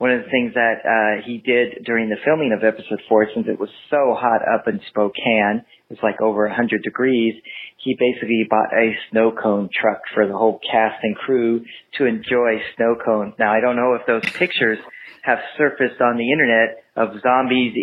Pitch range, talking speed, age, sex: 110-130 Hz, 200 wpm, 40-59, male